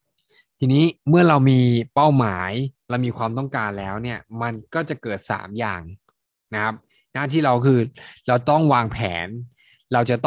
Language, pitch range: Thai, 110-140 Hz